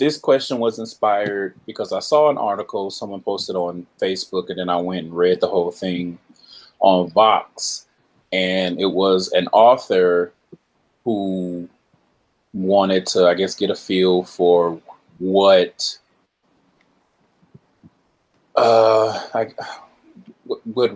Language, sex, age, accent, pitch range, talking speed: English, male, 30-49, American, 90-115 Hz, 120 wpm